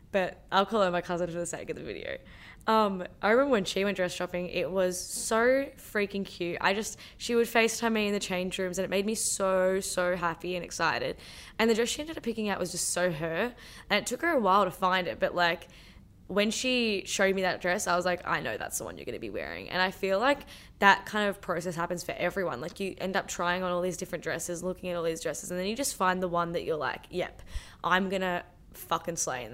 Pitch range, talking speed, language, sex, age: 180-215 Hz, 260 wpm, English, female, 10-29